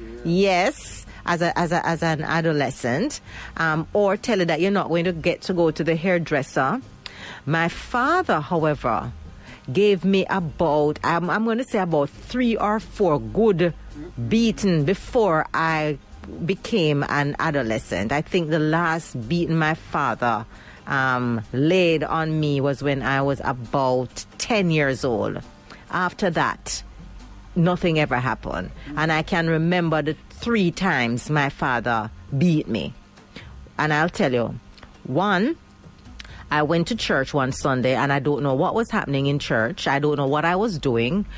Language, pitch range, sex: English, 140-175 Hz, female